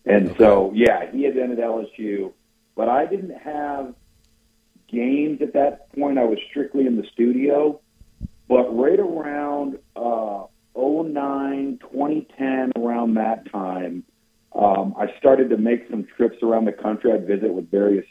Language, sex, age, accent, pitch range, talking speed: English, male, 50-69, American, 110-125 Hz, 150 wpm